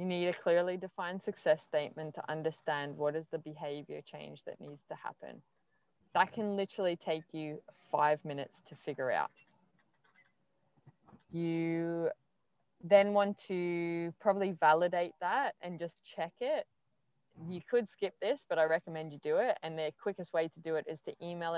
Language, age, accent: English, 20-39, Australian